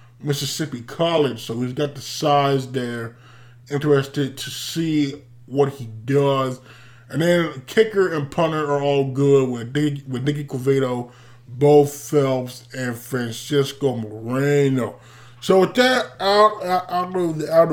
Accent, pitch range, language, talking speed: American, 120-150 Hz, English, 140 wpm